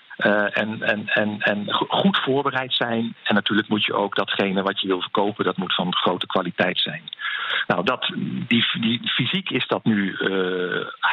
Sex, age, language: male, 50-69, English